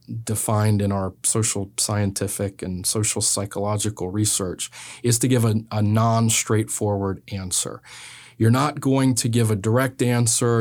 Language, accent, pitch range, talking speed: English, American, 105-125 Hz, 135 wpm